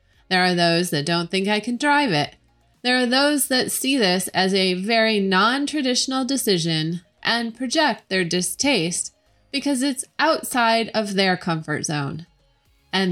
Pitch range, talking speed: 170-230 Hz, 150 wpm